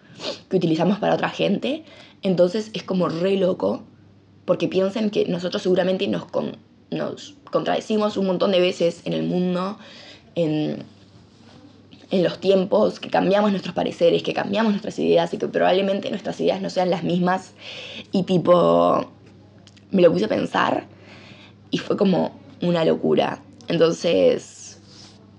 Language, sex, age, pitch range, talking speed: Spanish, female, 20-39, 165-205 Hz, 140 wpm